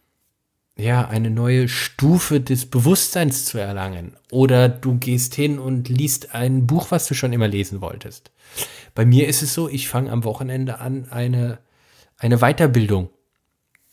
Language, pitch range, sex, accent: German, 110-135 Hz, male, German